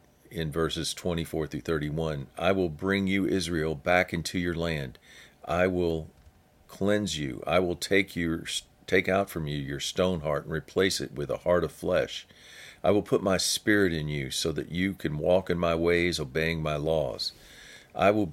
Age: 50-69